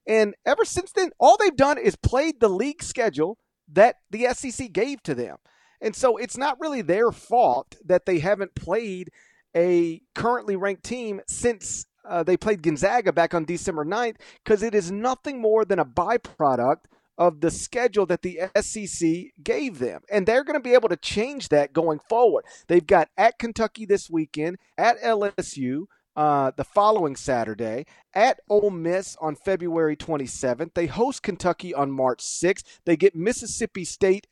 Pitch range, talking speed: 165-225 Hz, 170 wpm